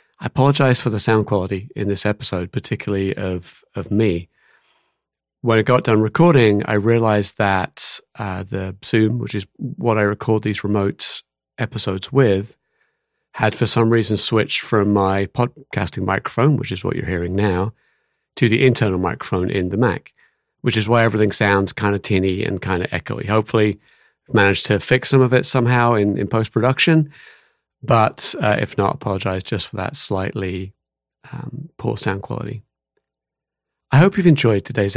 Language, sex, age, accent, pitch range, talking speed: English, male, 30-49, British, 100-125 Hz, 165 wpm